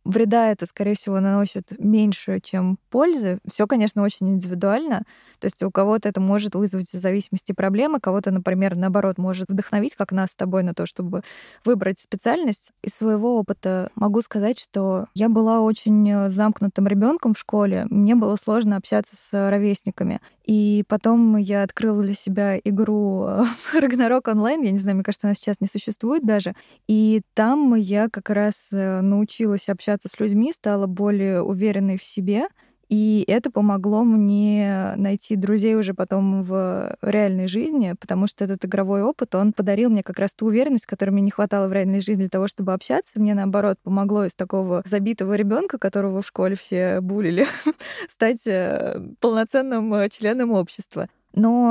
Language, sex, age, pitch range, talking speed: Russian, female, 20-39, 195-220 Hz, 160 wpm